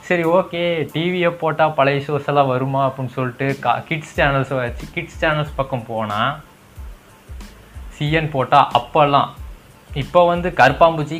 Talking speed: 130 wpm